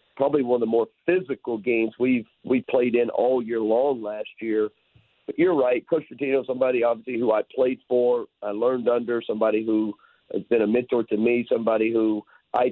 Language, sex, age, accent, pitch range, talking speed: English, male, 50-69, American, 115-135 Hz, 195 wpm